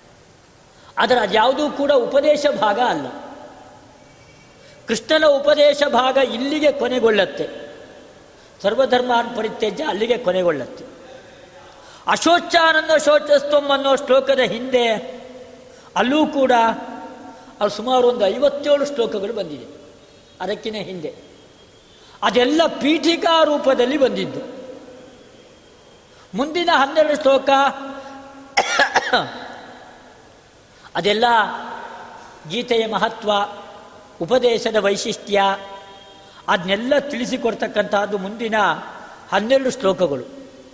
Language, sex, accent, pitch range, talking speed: Kannada, female, native, 210-275 Hz, 70 wpm